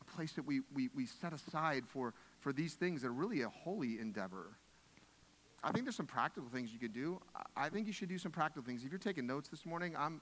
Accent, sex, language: American, male, English